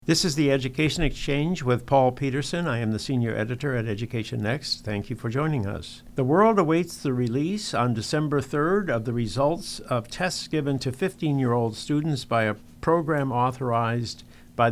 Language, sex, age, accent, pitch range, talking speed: English, male, 60-79, American, 110-145 Hz, 175 wpm